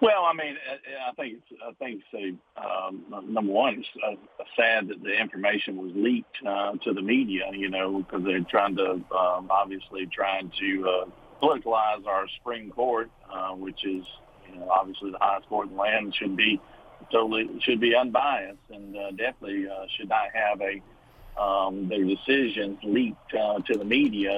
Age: 50-69